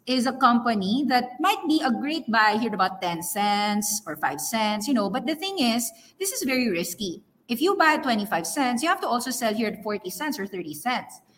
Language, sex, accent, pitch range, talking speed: English, female, Filipino, 195-285 Hz, 235 wpm